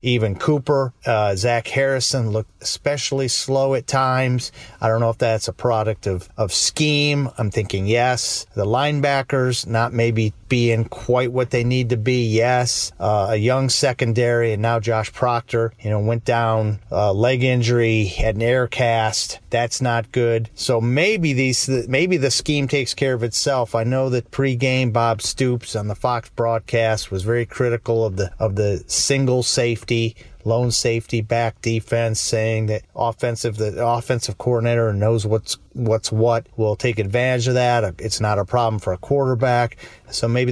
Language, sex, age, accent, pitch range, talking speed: English, male, 40-59, American, 110-130 Hz, 170 wpm